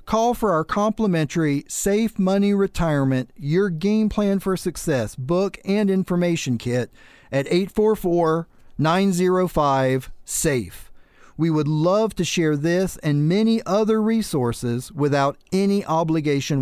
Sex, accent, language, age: male, American, English, 40-59